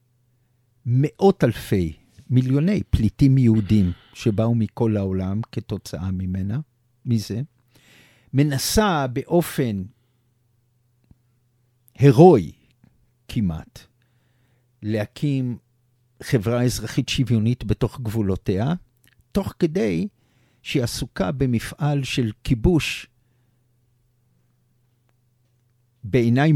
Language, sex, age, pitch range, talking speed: Hebrew, male, 50-69, 120-150 Hz, 65 wpm